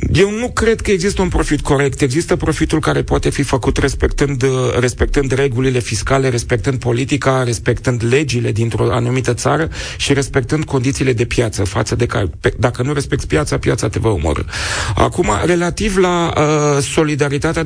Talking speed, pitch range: 160 wpm, 115-145 Hz